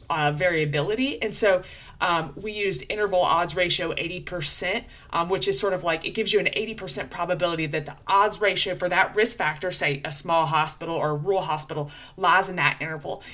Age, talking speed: 20-39, 195 wpm